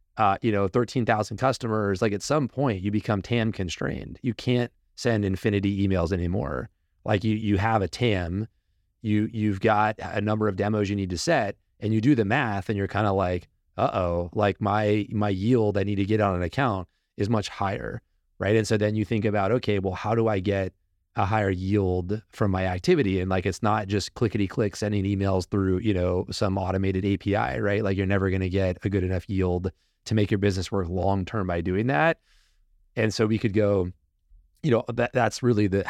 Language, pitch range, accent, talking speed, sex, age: English, 95-105 Hz, American, 210 wpm, male, 30-49